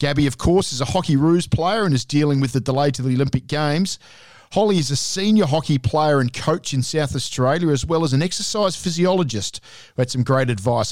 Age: 50-69